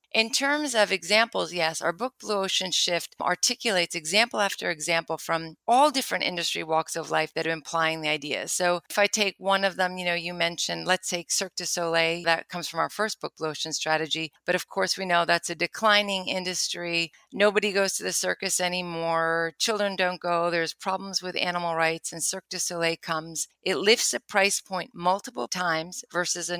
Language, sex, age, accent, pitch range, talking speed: English, female, 40-59, American, 165-190 Hz, 200 wpm